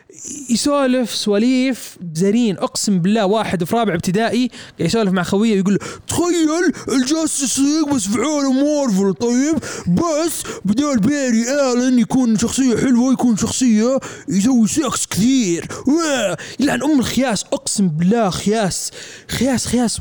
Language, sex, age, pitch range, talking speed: Arabic, male, 20-39, 175-240 Hz, 125 wpm